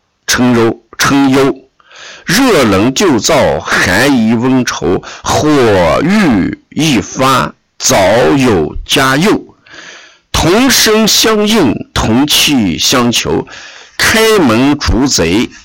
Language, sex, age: Chinese, male, 50-69